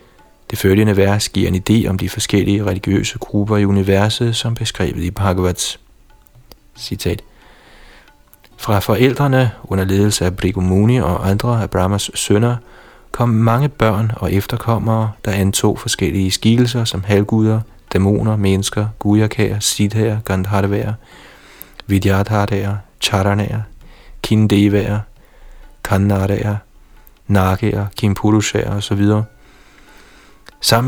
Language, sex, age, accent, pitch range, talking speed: Danish, male, 30-49, native, 95-110 Hz, 105 wpm